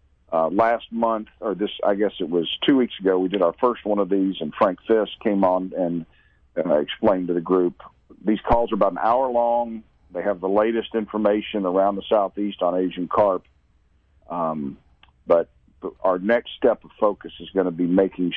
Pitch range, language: 85-110 Hz, English